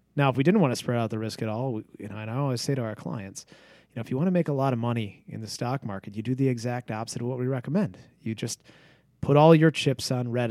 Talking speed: 310 wpm